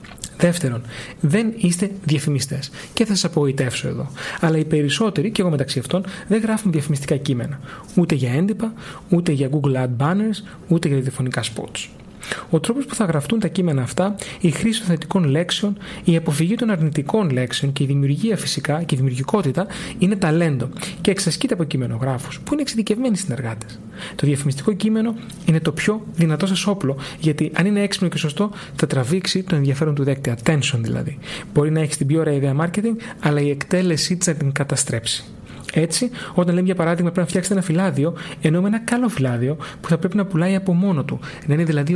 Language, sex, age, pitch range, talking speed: Greek, male, 30-49, 140-190 Hz, 185 wpm